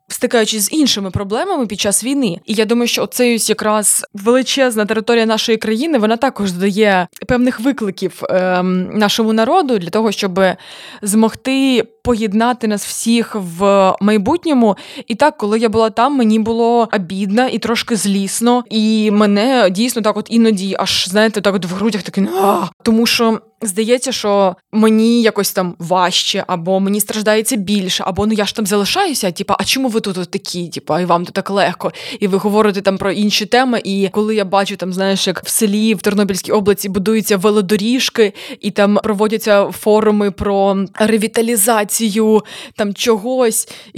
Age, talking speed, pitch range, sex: 20-39, 160 wpm, 200-250 Hz, female